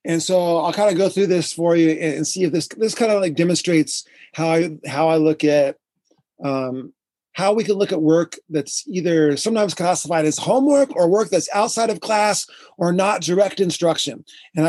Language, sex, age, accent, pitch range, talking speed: English, male, 30-49, American, 175-250 Hz, 200 wpm